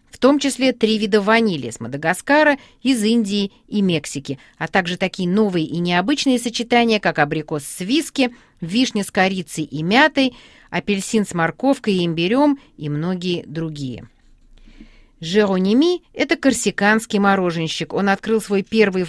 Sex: female